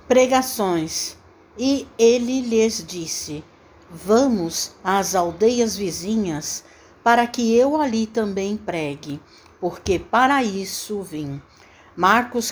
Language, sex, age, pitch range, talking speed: Portuguese, female, 60-79, 175-245 Hz, 95 wpm